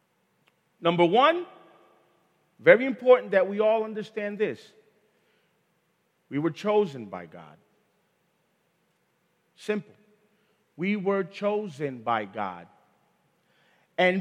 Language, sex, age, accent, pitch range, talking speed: English, male, 40-59, American, 160-230 Hz, 90 wpm